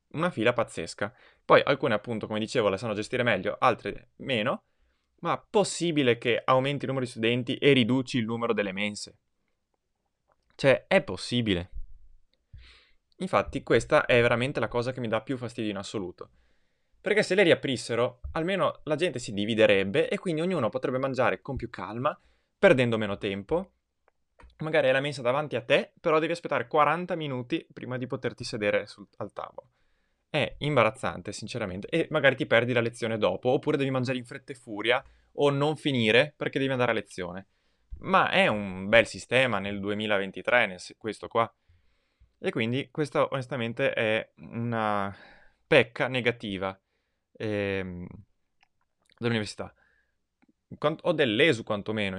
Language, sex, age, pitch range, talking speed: Italian, male, 20-39, 100-135 Hz, 150 wpm